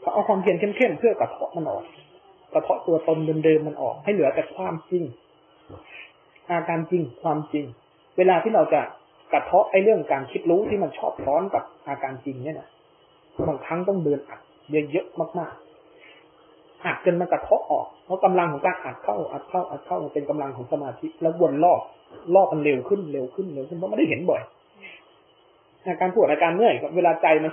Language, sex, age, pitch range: Thai, male, 20-39, 145-180 Hz